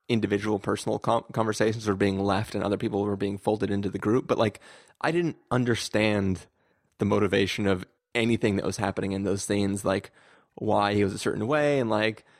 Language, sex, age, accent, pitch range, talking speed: English, male, 20-39, American, 100-120 Hz, 190 wpm